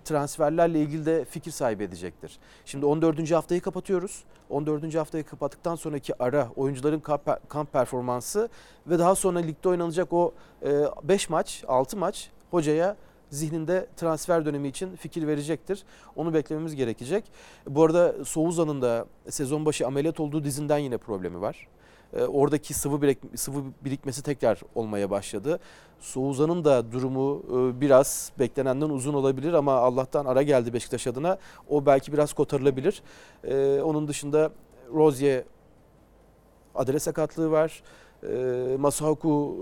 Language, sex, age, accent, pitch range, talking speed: Turkish, male, 40-59, native, 140-160 Hz, 125 wpm